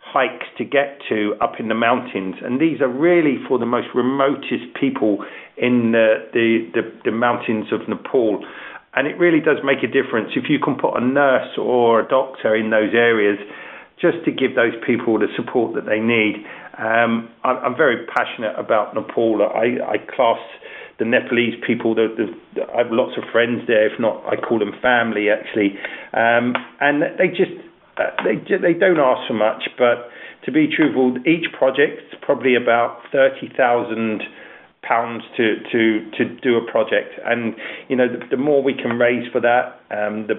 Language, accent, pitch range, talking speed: English, British, 110-130 Hz, 180 wpm